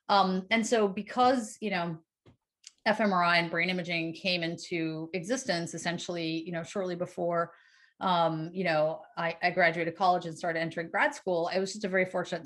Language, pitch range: English, 165-200 Hz